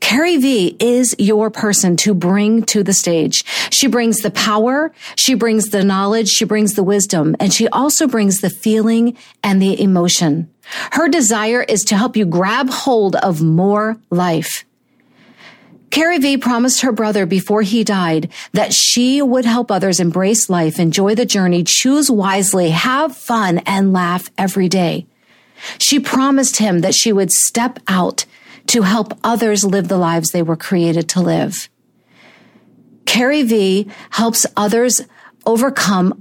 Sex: female